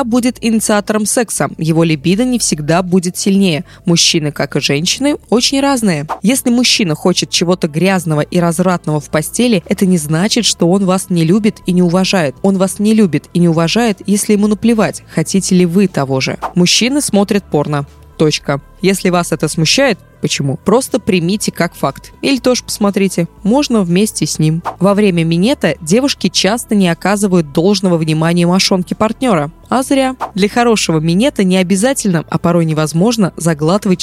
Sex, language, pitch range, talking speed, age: female, Russian, 170-220 Hz, 160 wpm, 20-39